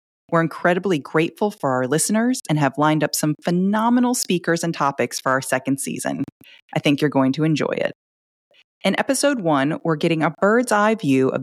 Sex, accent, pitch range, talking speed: female, American, 145-195 Hz, 190 wpm